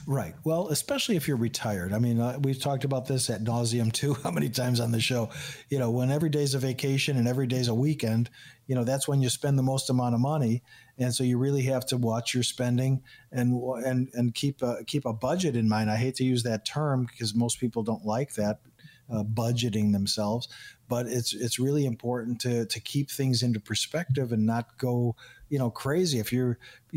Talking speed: 220 wpm